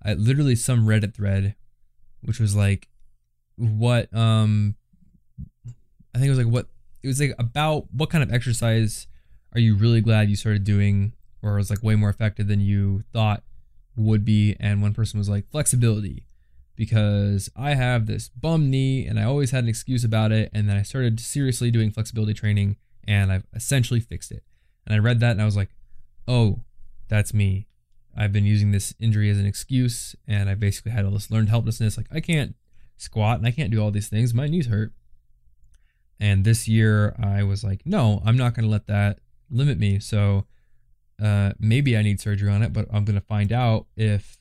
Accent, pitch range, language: American, 100-115 Hz, English